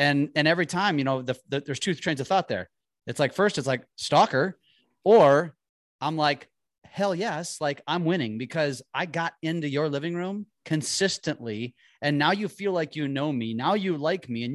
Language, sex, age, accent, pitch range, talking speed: English, male, 30-49, American, 130-180 Hz, 200 wpm